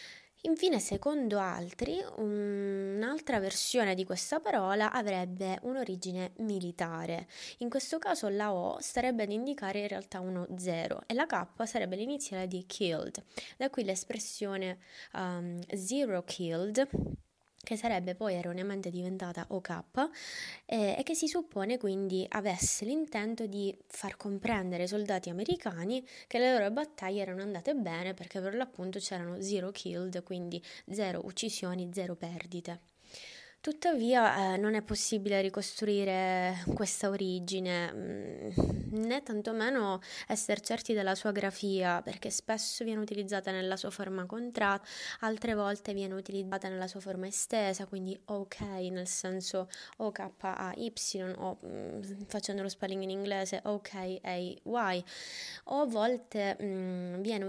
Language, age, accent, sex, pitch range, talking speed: Italian, 20-39, native, female, 185-225 Hz, 130 wpm